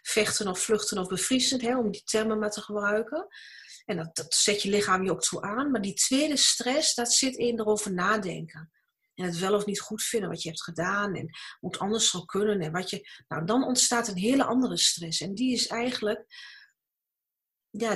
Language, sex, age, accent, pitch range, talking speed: Dutch, female, 40-59, Dutch, 200-255 Hz, 205 wpm